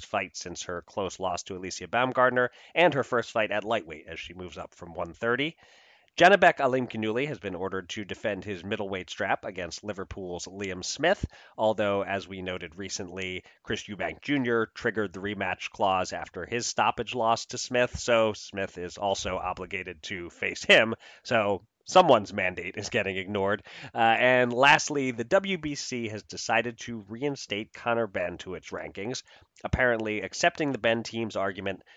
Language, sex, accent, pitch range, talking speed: English, male, American, 95-125 Hz, 165 wpm